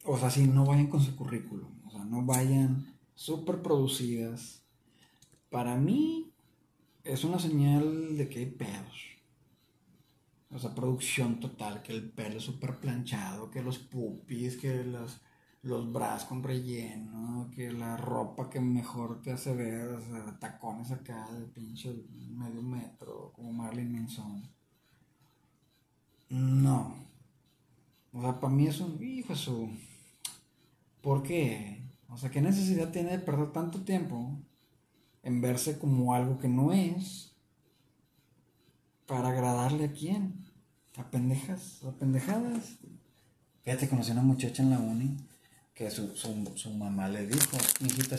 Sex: male